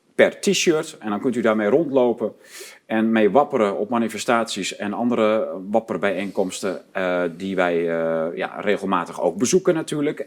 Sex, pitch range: male, 110-140 Hz